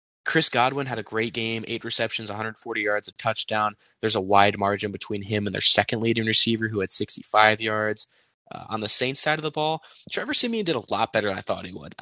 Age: 20-39